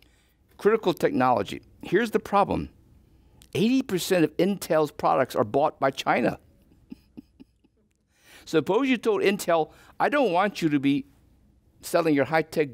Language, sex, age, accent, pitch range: Chinese, male, 60-79, American, 120-170 Hz